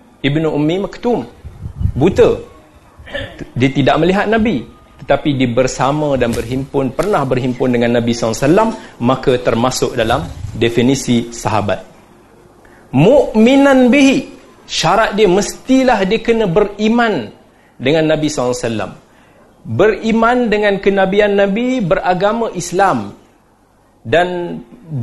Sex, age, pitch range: male, 40-59, 140-230 Hz